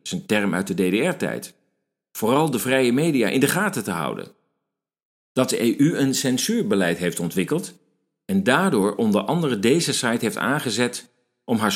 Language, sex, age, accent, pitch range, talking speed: Dutch, male, 50-69, Dutch, 105-150 Hz, 165 wpm